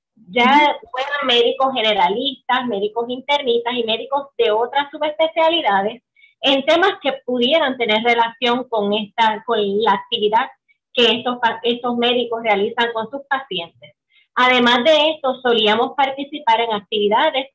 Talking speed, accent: 125 wpm, American